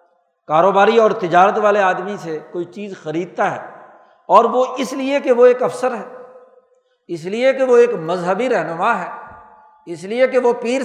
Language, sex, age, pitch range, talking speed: Urdu, male, 60-79, 180-255 Hz, 175 wpm